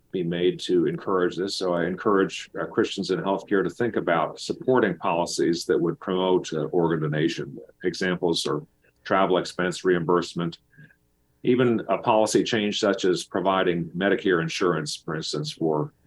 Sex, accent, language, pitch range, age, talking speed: male, American, English, 85-105 Hz, 50-69, 150 wpm